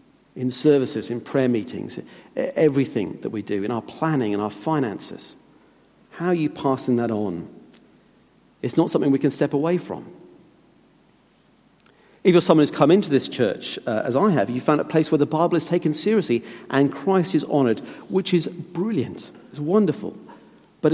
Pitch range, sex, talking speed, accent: 130-165 Hz, male, 175 wpm, British